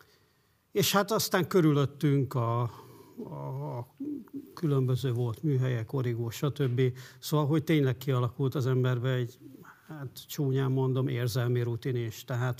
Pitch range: 125-150 Hz